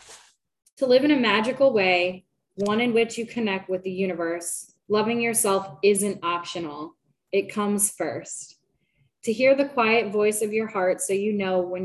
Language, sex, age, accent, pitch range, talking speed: English, female, 10-29, American, 175-220 Hz, 165 wpm